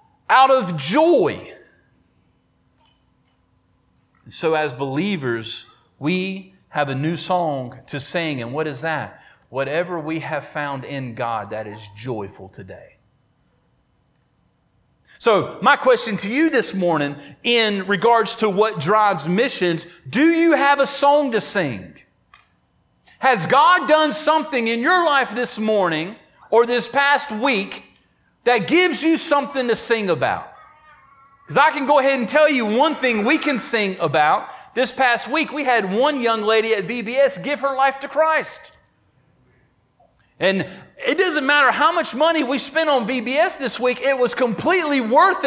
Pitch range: 190-290 Hz